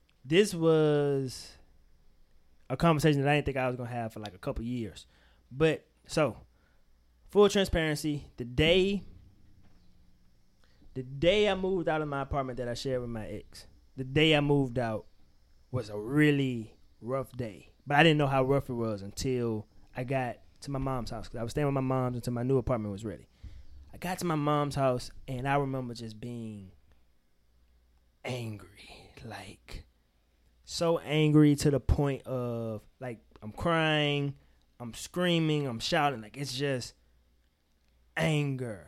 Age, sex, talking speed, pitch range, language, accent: 20-39, male, 165 wpm, 100-145 Hz, English, American